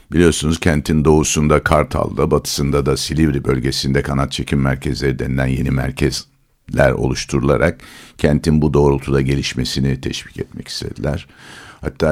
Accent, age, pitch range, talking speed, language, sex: native, 60-79, 70-80 Hz, 115 wpm, Turkish, male